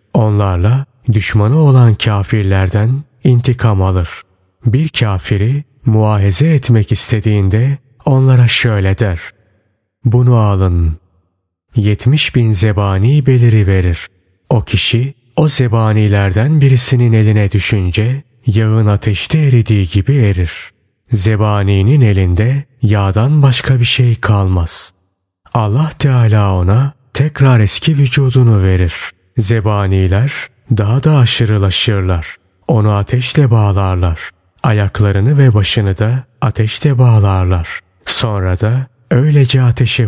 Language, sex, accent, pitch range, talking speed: Turkish, male, native, 100-125 Hz, 95 wpm